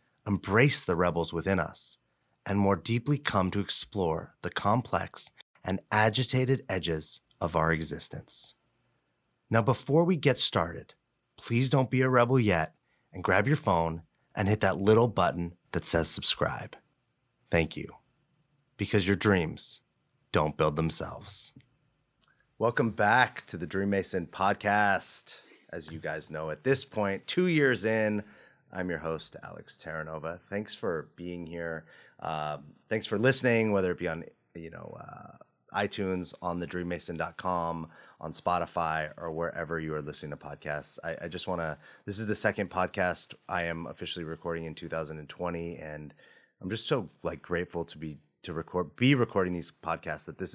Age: 30-49